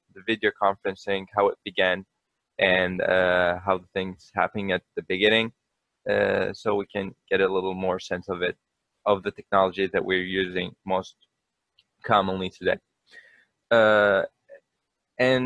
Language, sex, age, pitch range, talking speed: English, male, 20-39, 95-110 Hz, 145 wpm